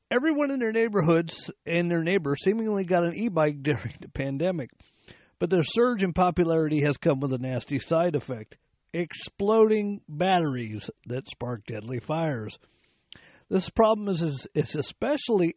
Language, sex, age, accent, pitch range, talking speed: English, male, 50-69, American, 135-190 Hz, 145 wpm